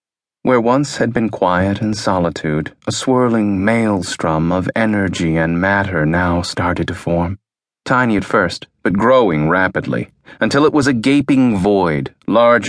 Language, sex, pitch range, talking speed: English, male, 85-115 Hz, 145 wpm